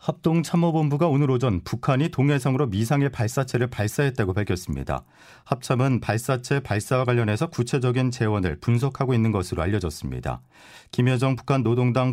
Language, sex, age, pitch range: Korean, male, 40-59, 105-135 Hz